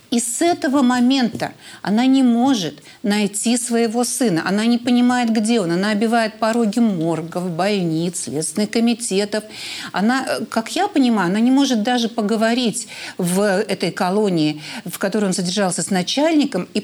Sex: female